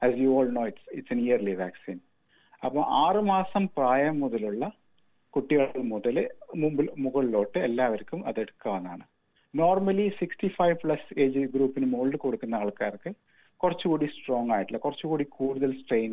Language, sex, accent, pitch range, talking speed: Malayalam, male, native, 125-170 Hz, 185 wpm